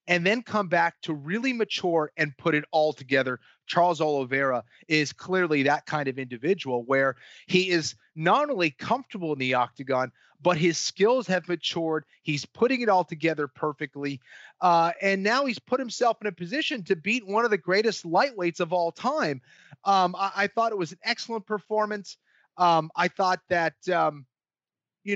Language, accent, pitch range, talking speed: English, American, 150-195 Hz, 175 wpm